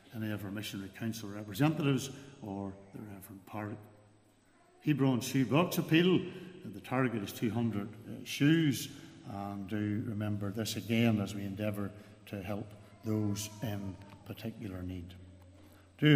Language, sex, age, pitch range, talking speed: English, male, 60-79, 105-135 Hz, 125 wpm